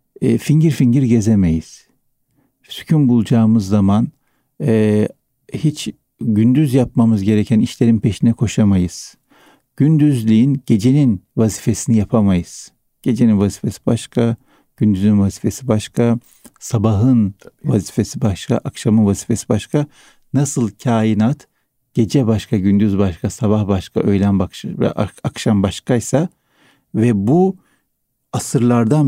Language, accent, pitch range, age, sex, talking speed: Turkish, native, 105-130 Hz, 60-79, male, 95 wpm